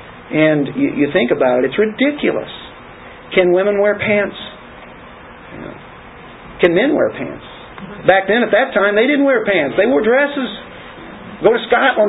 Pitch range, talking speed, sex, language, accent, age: 130-205 Hz, 155 wpm, male, English, American, 50-69